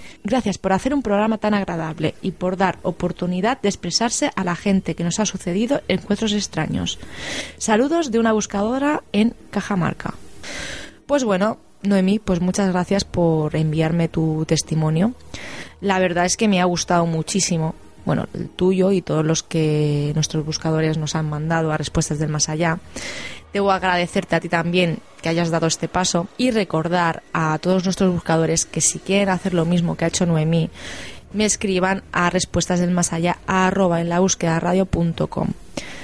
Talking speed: 165 wpm